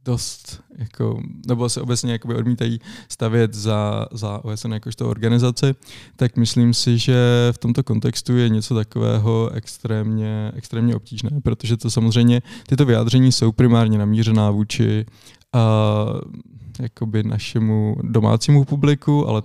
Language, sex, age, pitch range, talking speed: Czech, male, 20-39, 110-120 Hz, 125 wpm